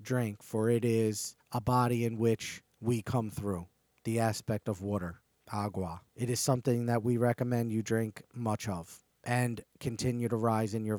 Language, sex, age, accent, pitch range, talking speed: English, male, 40-59, American, 105-120 Hz, 175 wpm